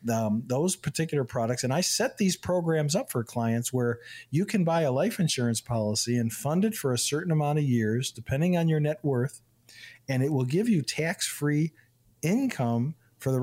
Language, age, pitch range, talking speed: English, 50-69, 115-155 Hz, 190 wpm